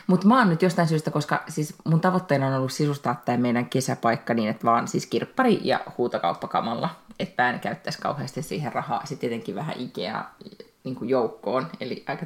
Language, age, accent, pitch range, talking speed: Finnish, 30-49, native, 140-200 Hz, 175 wpm